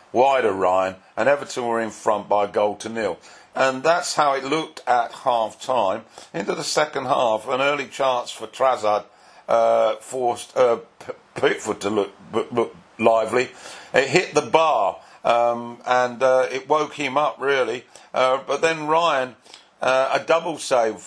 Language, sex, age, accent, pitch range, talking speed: English, male, 50-69, British, 120-140 Hz, 160 wpm